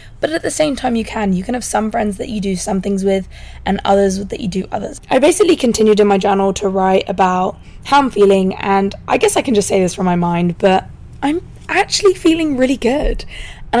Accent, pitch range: British, 195-245 Hz